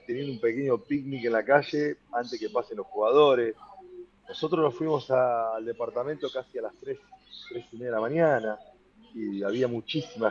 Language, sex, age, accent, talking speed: Spanish, male, 40-59, Argentinian, 180 wpm